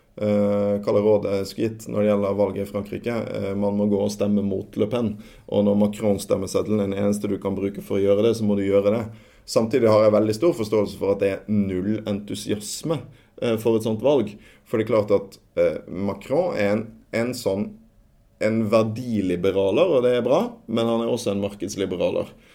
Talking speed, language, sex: 210 wpm, English, male